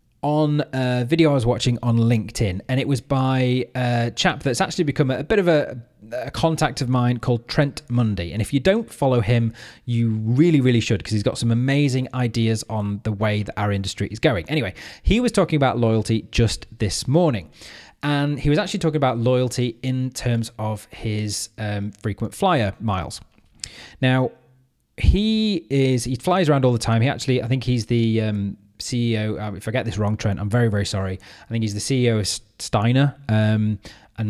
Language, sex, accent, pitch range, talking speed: English, male, British, 110-140 Hz, 200 wpm